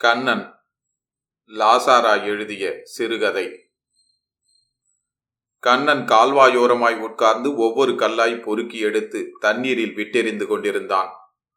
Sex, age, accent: male, 30-49, native